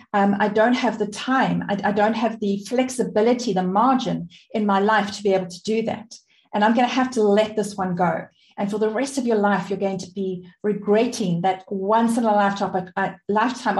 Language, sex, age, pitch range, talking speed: English, female, 40-59, 205-240 Hz, 220 wpm